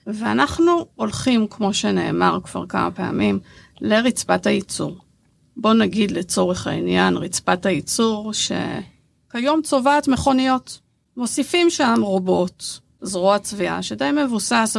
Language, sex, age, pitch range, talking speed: Hebrew, female, 50-69, 185-250 Hz, 100 wpm